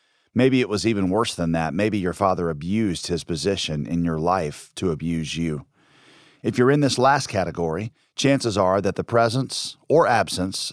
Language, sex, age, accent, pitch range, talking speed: English, male, 40-59, American, 95-125 Hz, 180 wpm